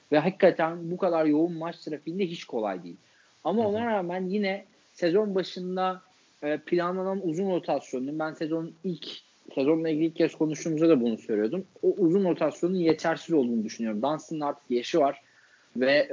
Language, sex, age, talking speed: Turkish, male, 40-59, 155 wpm